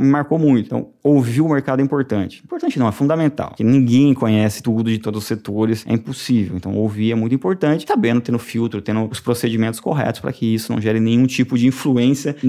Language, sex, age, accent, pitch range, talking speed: Portuguese, male, 20-39, Brazilian, 110-135 Hz, 210 wpm